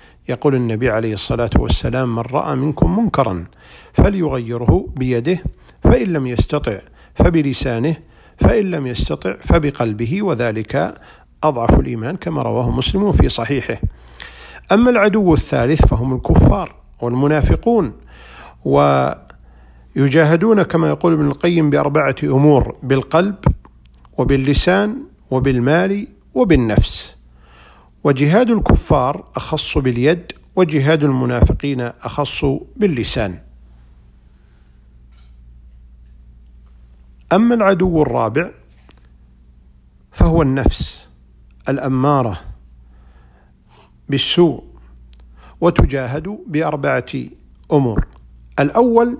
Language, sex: Arabic, male